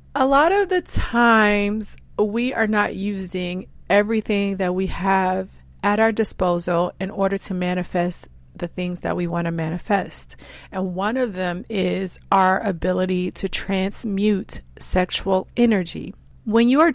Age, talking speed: 40-59, 145 wpm